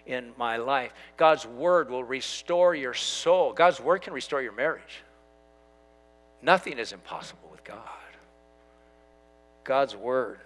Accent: American